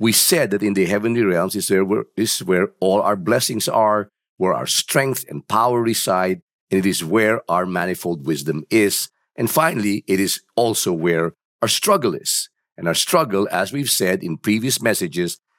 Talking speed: 180 wpm